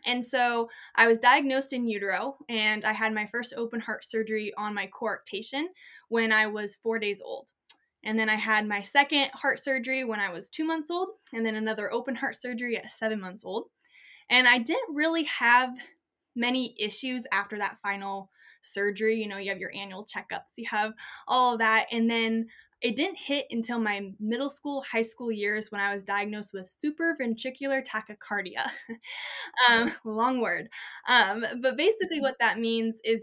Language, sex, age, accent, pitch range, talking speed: English, female, 10-29, American, 210-250 Hz, 180 wpm